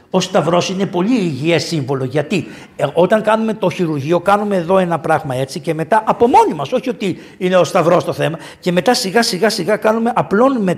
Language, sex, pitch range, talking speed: Greek, male, 185-275 Hz, 185 wpm